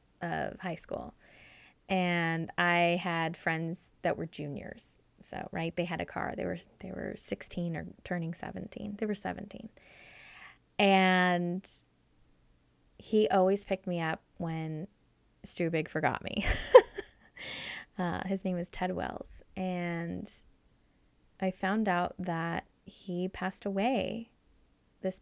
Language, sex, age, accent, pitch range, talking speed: English, female, 20-39, American, 180-230 Hz, 125 wpm